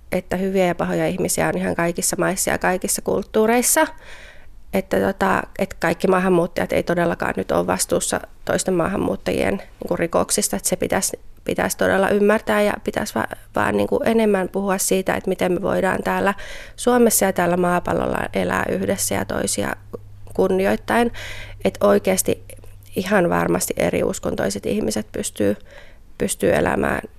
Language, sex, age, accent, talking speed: Finnish, female, 30-49, native, 135 wpm